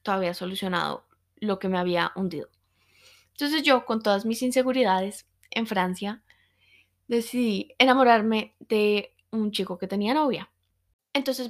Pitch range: 195-230 Hz